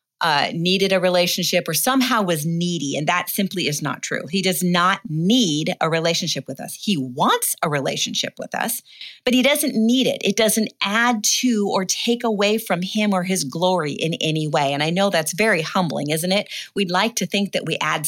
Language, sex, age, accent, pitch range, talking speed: English, female, 40-59, American, 160-210 Hz, 210 wpm